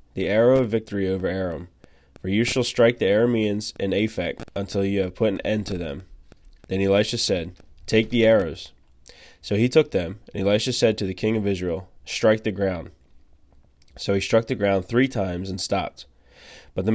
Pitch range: 90-110 Hz